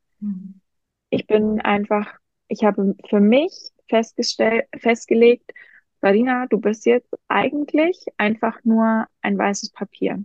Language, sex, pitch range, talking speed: German, female, 200-240 Hz, 105 wpm